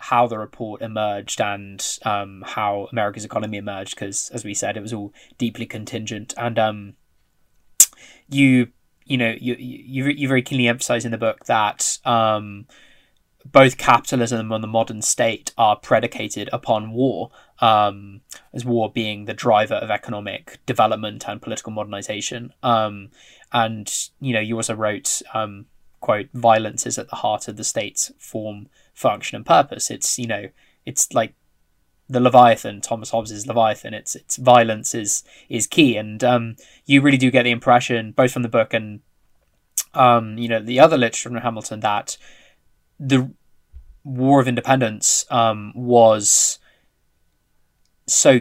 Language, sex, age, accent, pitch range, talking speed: English, male, 20-39, British, 105-125 Hz, 150 wpm